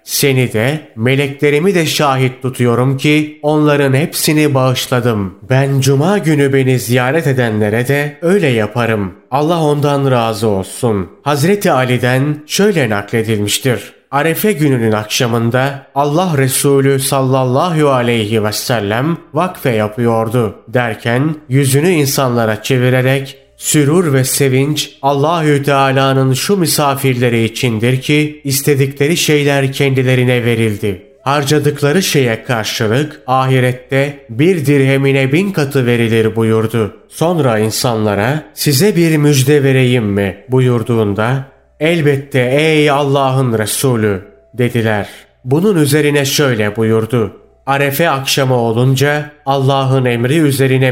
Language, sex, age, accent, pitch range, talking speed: Turkish, male, 30-49, native, 120-145 Hz, 105 wpm